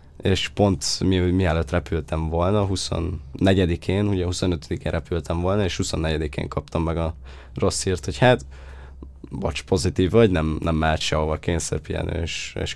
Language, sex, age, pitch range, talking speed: English, male, 20-39, 80-100 Hz, 140 wpm